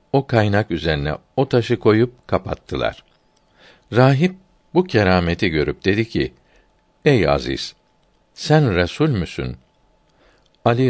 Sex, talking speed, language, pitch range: male, 105 wpm, Turkish, 90-115 Hz